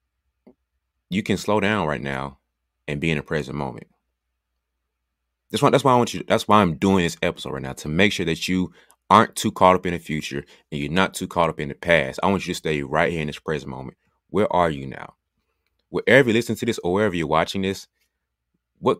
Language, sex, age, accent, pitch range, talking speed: English, male, 30-49, American, 70-95 Hz, 235 wpm